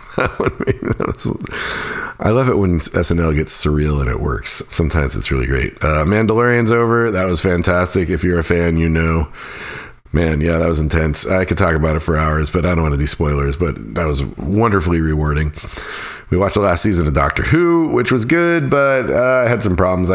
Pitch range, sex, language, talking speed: 75-95 Hz, male, English, 200 wpm